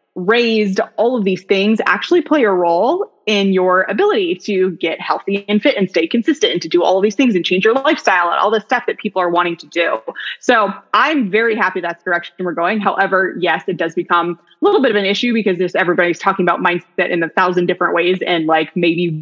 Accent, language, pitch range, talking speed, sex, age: American, English, 175-220 Hz, 230 wpm, female, 20-39